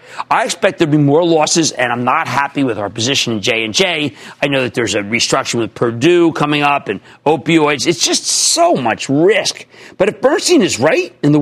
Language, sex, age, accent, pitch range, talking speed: English, male, 50-69, American, 130-200 Hz, 225 wpm